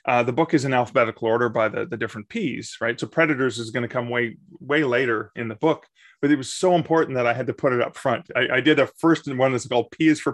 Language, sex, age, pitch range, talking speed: English, male, 30-49, 120-160 Hz, 290 wpm